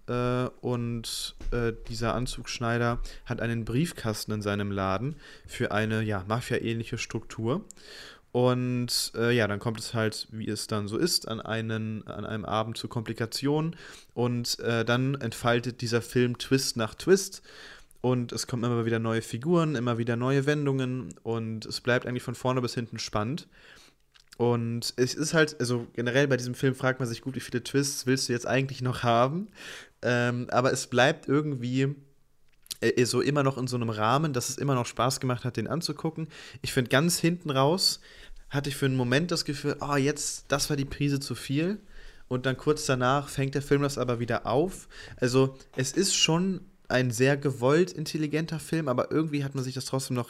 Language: German